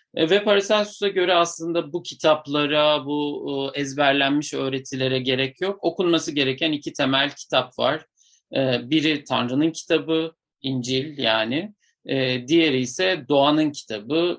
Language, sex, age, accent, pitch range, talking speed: Turkish, male, 50-69, native, 120-160 Hz, 110 wpm